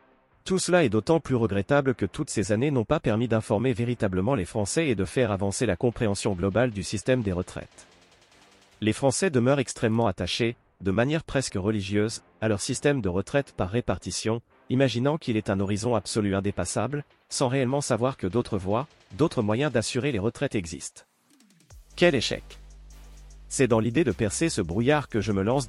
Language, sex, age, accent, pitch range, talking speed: French, male, 40-59, French, 100-135 Hz, 180 wpm